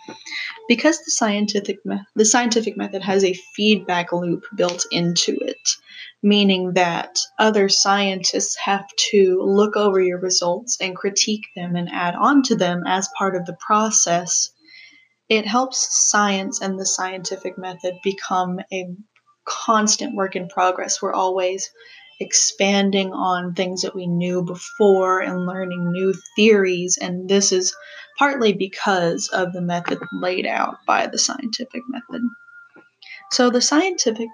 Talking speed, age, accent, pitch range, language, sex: 140 wpm, 10-29, American, 185-230 Hz, English, female